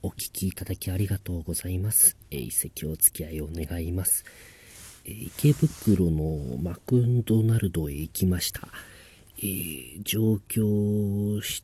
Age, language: 40-59, Japanese